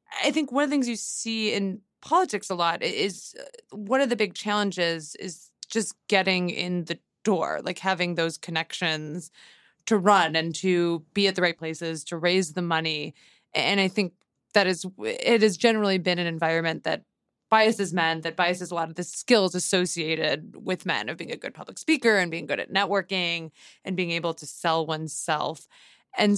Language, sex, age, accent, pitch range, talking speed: English, female, 20-39, American, 170-210 Hz, 190 wpm